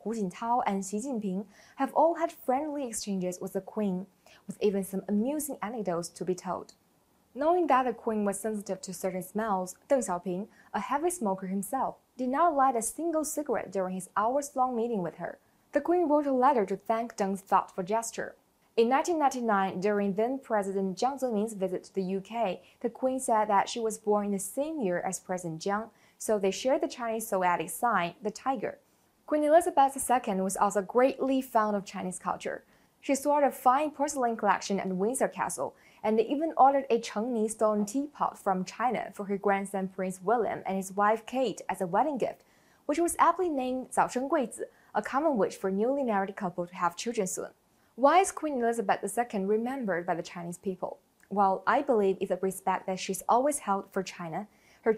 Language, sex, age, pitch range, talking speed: English, female, 20-39, 195-260 Hz, 190 wpm